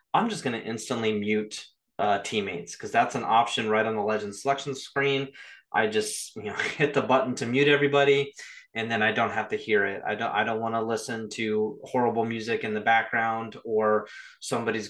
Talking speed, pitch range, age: 205 wpm, 110-140 Hz, 20-39